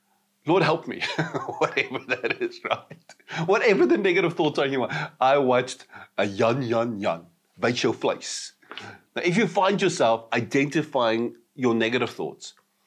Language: English